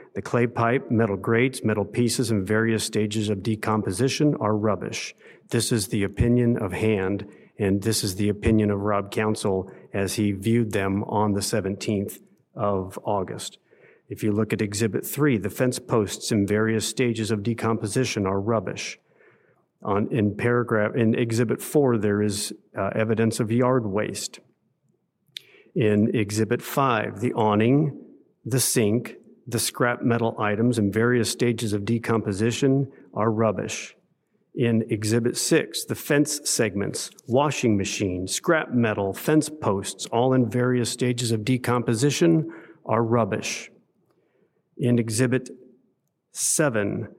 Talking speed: 135 wpm